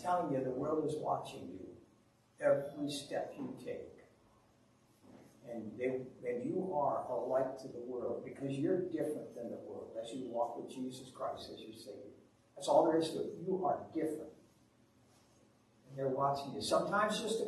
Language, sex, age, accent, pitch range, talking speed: English, male, 60-79, American, 140-215 Hz, 175 wpm